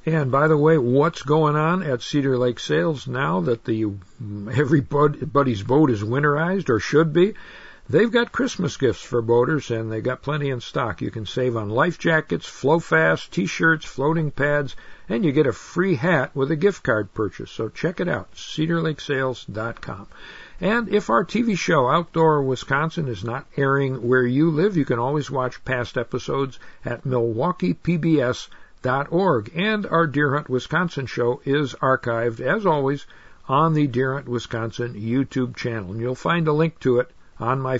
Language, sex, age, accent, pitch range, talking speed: English, male, 60-79, American, 125-160 Hz, 175 wpm